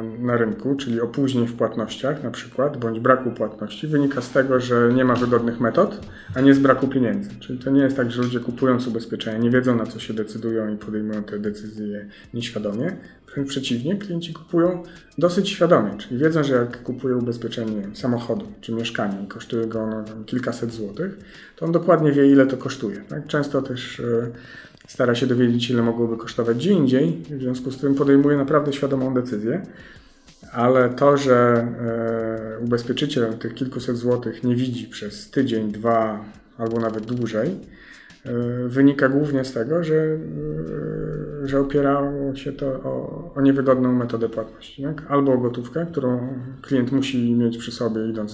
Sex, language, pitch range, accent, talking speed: male, Polish, 115-140 Hz, native, 165 wpm